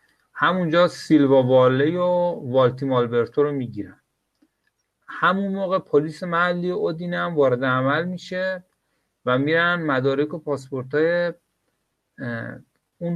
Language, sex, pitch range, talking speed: Persian, male, 120-150 Hz, 105 wpm